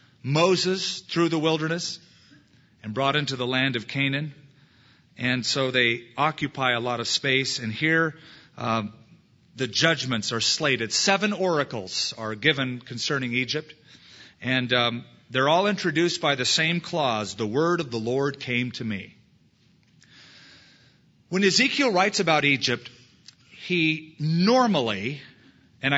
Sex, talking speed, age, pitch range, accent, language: male, 130 wpm, 40-59, 125-165 Hz, American, English